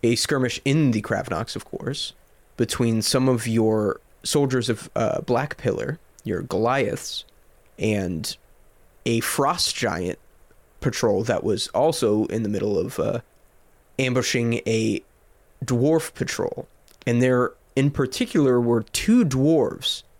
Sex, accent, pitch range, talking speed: male, American, 110-135 Hz, 125 wpm